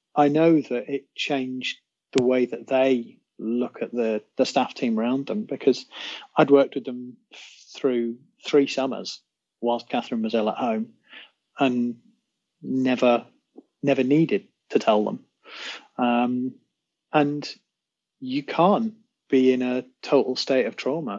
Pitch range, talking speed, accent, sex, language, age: 120-145 Hz, 140 wpm, British, male, English, 30-49